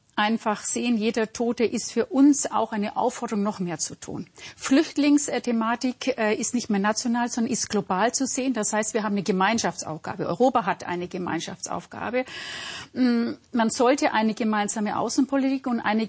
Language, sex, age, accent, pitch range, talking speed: German, female, 50-69, German, 210-245 Hz, 155 wpm